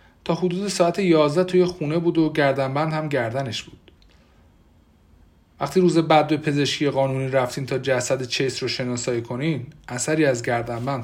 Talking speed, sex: 160 wpm, male